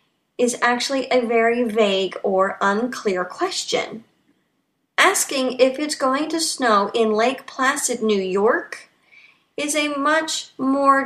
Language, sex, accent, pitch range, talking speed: English, female, American, 220-270 Hz, 125 wpm